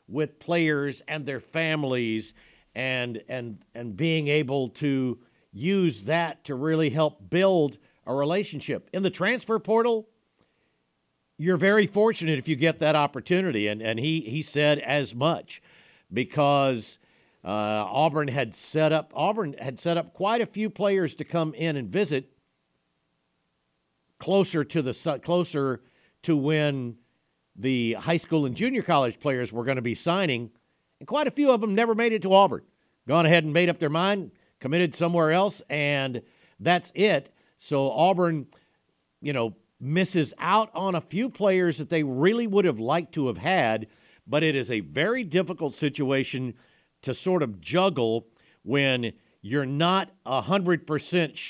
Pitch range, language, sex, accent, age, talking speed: 125-175 Hz, English, male, American, 60-79, 155 wpm